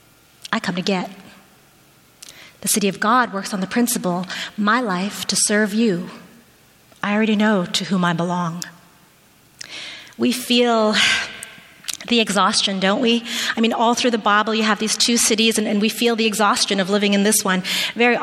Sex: female